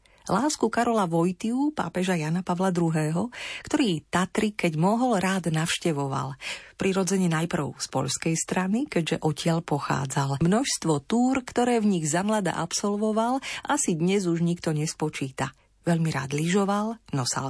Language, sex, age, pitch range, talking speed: Slovak, female, 40-59, 160-200 Hz, 125 wpm